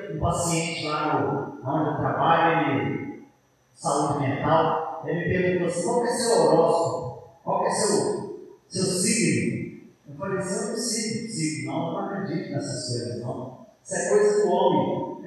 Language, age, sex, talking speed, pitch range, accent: Portuguese, 40-59, male, 160 wpm, 165-255 Hz, Brazilian